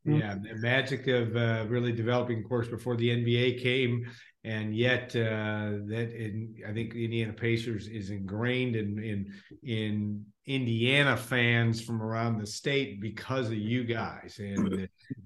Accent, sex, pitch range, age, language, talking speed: American, male, 105-125 Hz, 50-69, English, 155 wpm